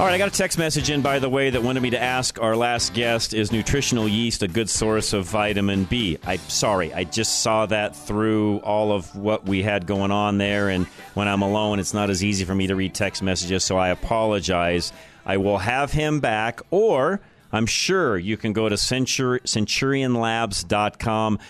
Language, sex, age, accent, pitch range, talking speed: English, male, 40-59, American, 100-130 Hz, 205 wpm